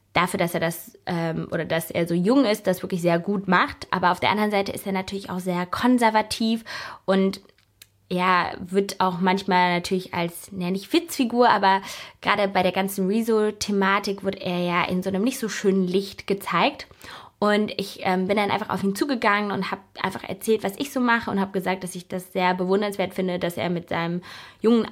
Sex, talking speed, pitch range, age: female, 200 wpm, 185-225 Hz, 20-39